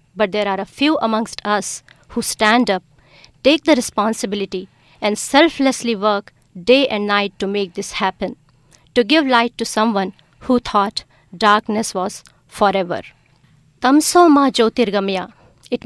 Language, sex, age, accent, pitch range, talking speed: English, female, 50-69, Indian, 190-235 Hz, 130 wpm